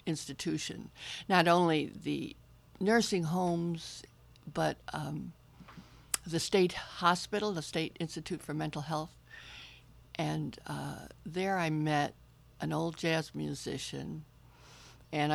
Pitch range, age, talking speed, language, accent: 130-170 Hz, 60-79, 105 wpm, English, American